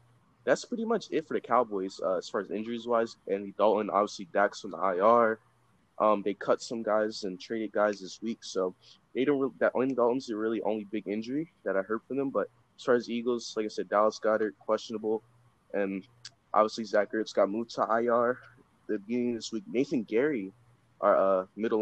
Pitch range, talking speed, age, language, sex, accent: 105-120 Hz, 210 wpm, 20-39, English, male, American